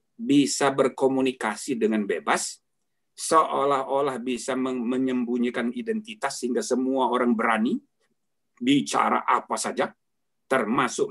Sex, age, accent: male, 50-69, native